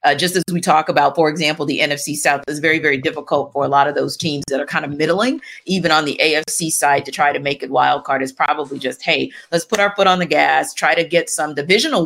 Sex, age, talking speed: female, 40-59, 270 wpm